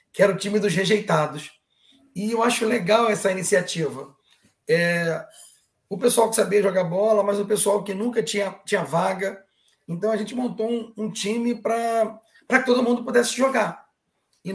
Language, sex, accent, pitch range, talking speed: Portuguese, male, Brazilian, 175-220 Hz, 170 wpm